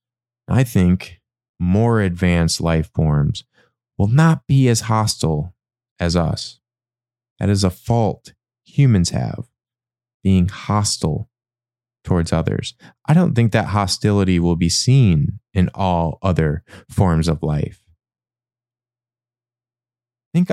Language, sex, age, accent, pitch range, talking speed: English, male, 20-39, American, 95-120 Hz, 110 wpm